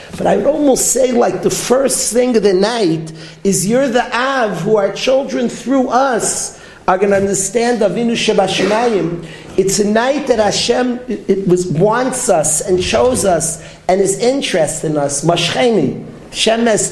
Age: 50-69